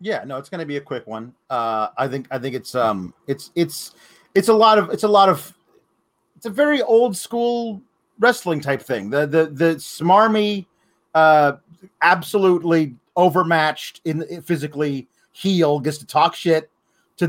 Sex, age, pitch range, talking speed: male, 30-49, 160-235 Hz, 170 wpm